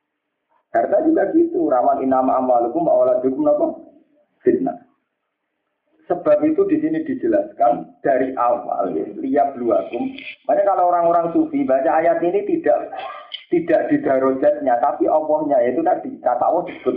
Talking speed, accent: 130 wpm, native